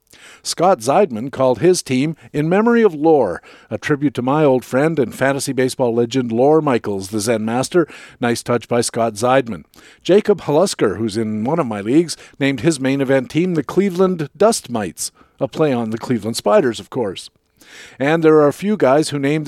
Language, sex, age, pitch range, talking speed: English, male, 50-69, 125-165 Hz, 190 wpm